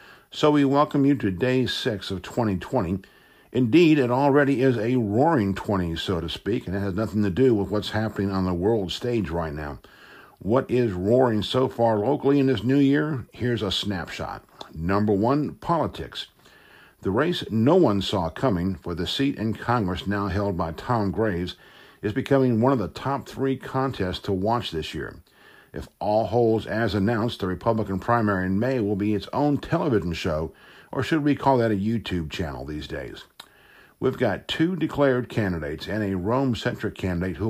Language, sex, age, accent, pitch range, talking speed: English, male, 60-79, American, 95-130 Hz, 180 wpm